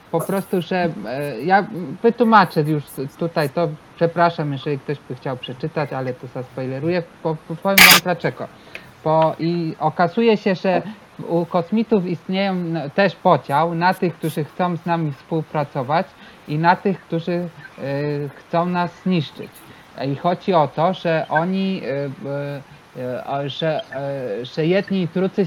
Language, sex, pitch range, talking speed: Polish, male, 140-180 Hz, 130 wpm